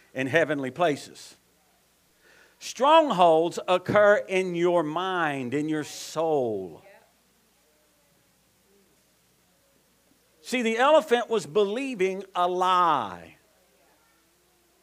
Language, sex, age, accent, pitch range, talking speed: English, male, 50-69, American, 180-240 Hz, 75 wpm